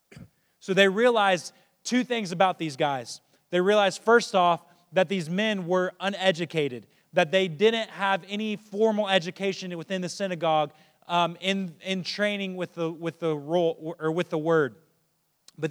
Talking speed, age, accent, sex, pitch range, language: 155 wpm, 30-49, American, male, 165-210 Hz, English